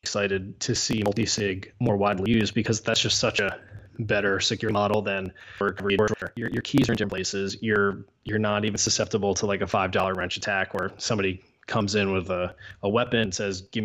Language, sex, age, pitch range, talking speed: English, male, 20-39, 100-115 Hz, 200 wpm